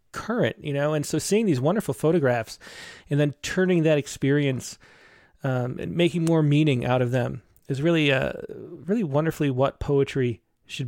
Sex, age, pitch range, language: male, 30-49, 135-180 Hz, English